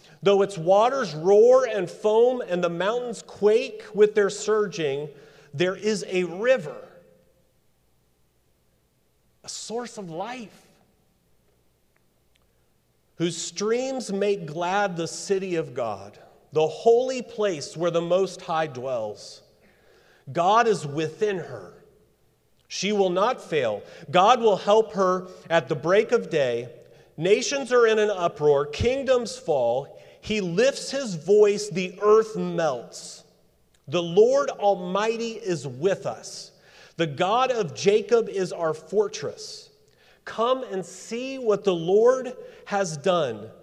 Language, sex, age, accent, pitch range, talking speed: English, male, 40-59, American, 160-220 Hz, 120 wpm